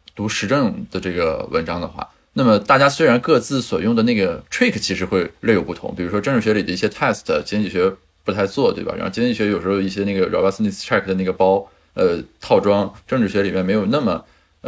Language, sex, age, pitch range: Chinese, male, 20-39, 95-135 Hz